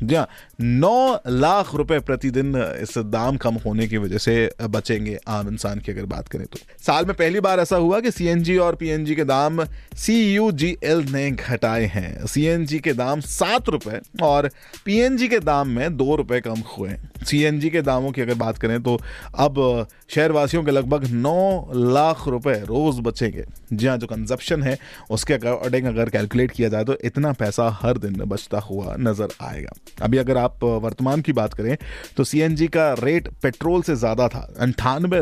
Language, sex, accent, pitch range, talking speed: Hindi, male, native, 115-155 Hz, 175 wpm